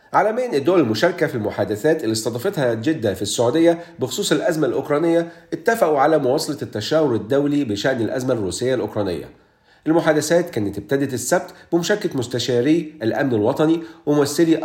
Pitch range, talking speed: 120-165 Hz, 130 wpm